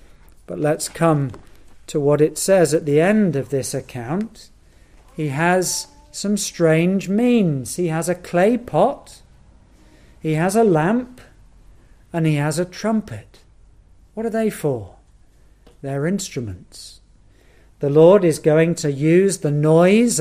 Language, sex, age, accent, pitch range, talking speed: English, male, 40-59, British, 120-185 Hz, 135 wpm